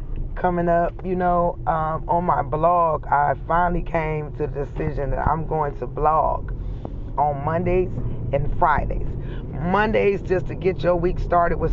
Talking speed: 160 wpm